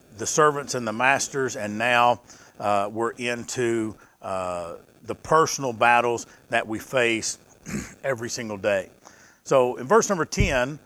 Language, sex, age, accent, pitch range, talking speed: English, male, 50-69, American, 115-150 Hz, 140 wpm